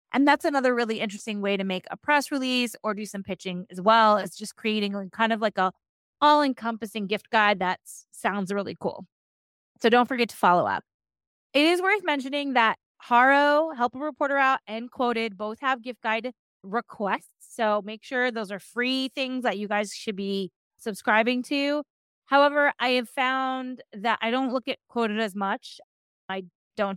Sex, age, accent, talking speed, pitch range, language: female, 30-49, American, 180 wpm, 205-255 Hz, English